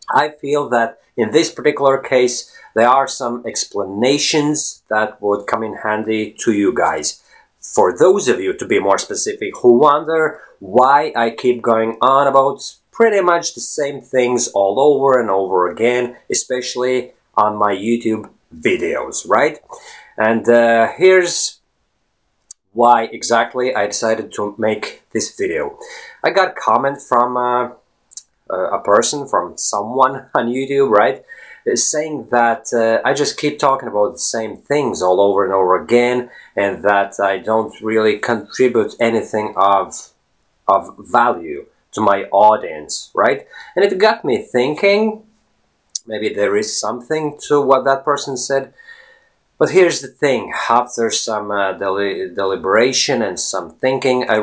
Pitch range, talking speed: 110-170 Hz, 145 wpm